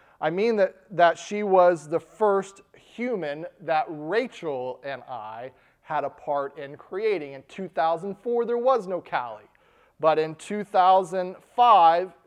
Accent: American